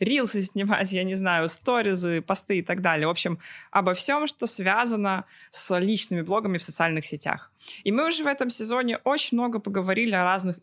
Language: Russian